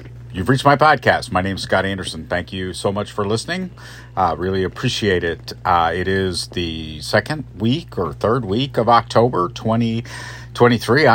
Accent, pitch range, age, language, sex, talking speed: American, 95-120 Hz, 50-69, English, male, 165 wpm